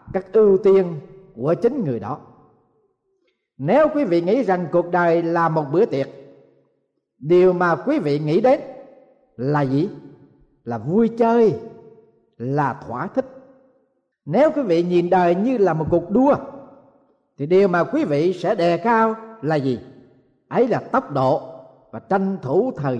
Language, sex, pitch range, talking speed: Vietnamese, male, 165-245 Hz, 155 wpm